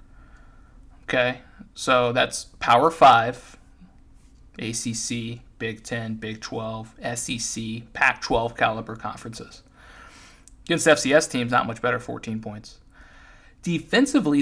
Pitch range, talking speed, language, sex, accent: 110-150 Hz, 95 wpm, English, male, American